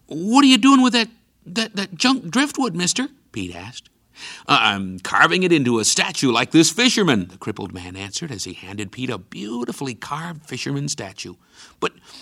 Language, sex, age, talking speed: English, male, 60-79, 180 wpm